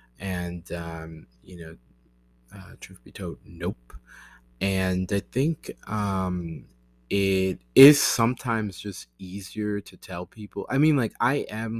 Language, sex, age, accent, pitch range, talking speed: English, male, 20-39, American, 80-95 Hz, 130 wpm